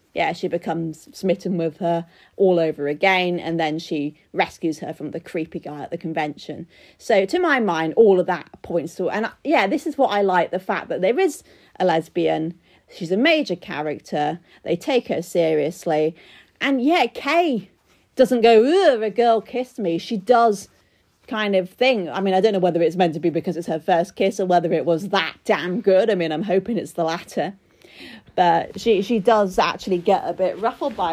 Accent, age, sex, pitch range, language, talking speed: British, 40-59, female, 170-225 Hz, English, 205 wpm